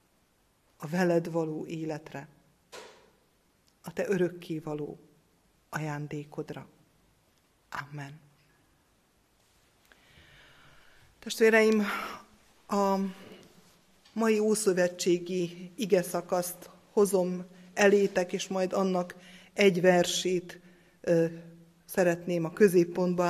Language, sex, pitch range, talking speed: Hungarian, female, 165-195 Hz, 65 wpm